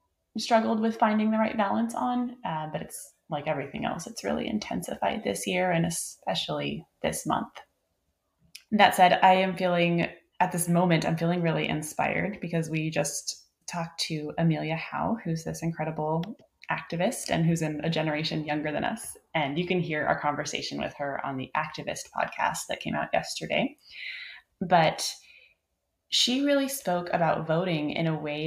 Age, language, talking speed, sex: 20-39, English, 165 wpm, female